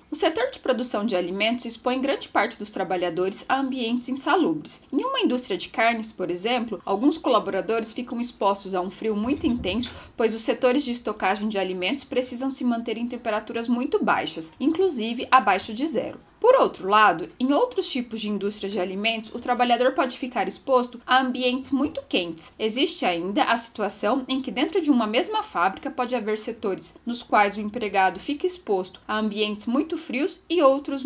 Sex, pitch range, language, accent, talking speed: female, 215-275 Hz, Portuguese, Brazilian, 180 wpm